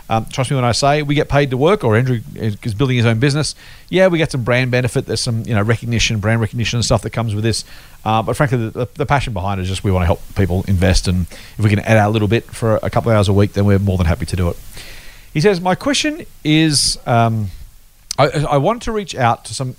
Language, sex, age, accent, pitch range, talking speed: English, male, 40-59, Australian, 110-155 Hz, 275 wpm